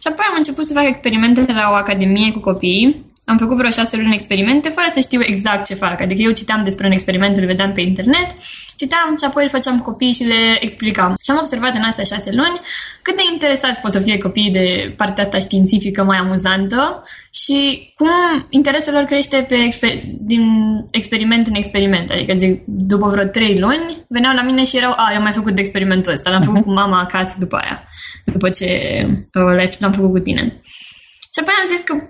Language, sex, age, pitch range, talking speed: Romanian, female, 10-29, 195-265 Hz, 210 wpm